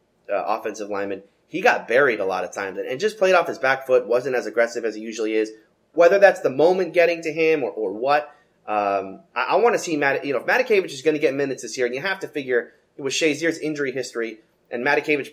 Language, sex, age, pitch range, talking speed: English, male, 30-49, 125-190 Hz, 250 wpm